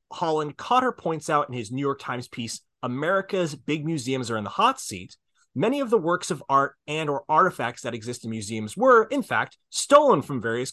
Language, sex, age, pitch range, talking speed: English, male, 30-49, 125-175 Hz, 205 wpm